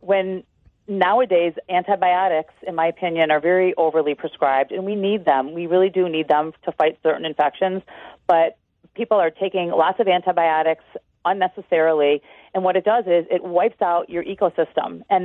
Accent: American